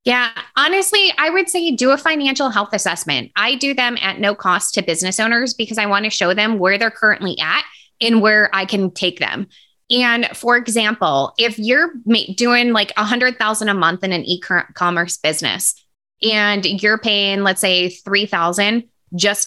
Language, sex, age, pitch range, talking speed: English, female, 20-39, 190-235 Hz, 185 wpm